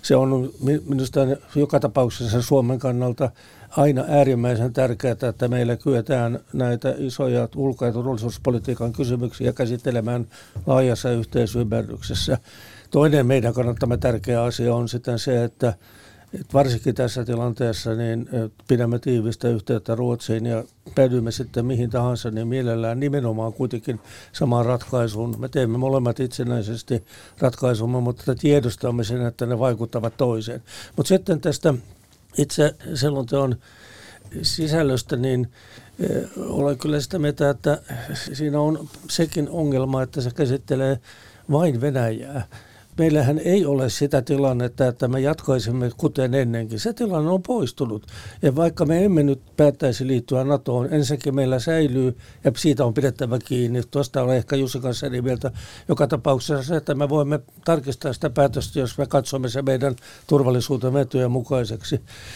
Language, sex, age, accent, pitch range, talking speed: Finnish, male, 60-79, native, 120-140 Hz, 130 wpm